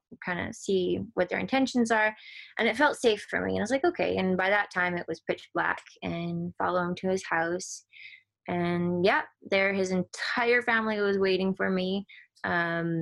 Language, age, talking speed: English, 20-39, 200 wpm